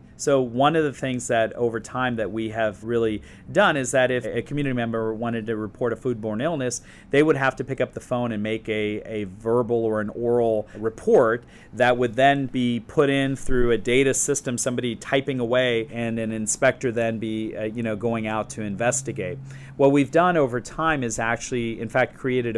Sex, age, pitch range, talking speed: male, 40-59, 115-130 Hz, 205 wpm